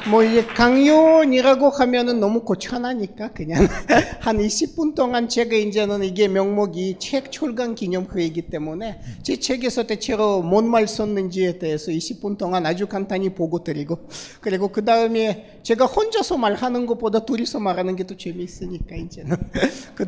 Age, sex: 40-59, male